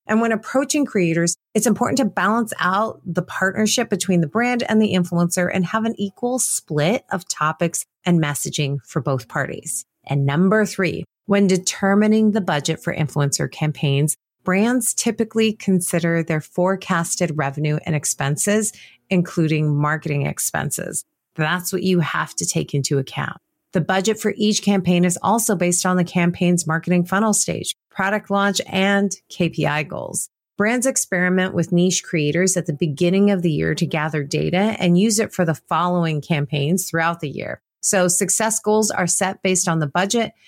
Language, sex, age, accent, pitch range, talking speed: English, female, 30-49, American, 160-210 Hz, 165 wpm